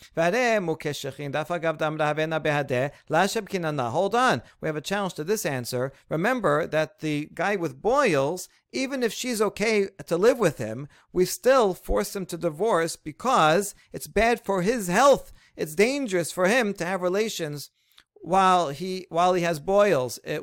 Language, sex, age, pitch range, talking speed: English, male, 50-69, 150-195 Hz, 145 wpm